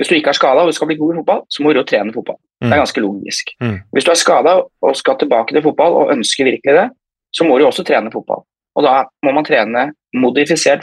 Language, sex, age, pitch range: English, male, 20-39, 125-180 Hz